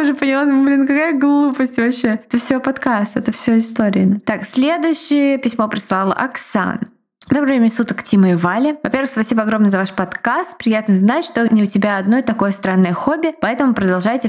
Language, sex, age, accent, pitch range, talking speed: Russian, female, 20-39, native, 195-245 Hz, 170 wpm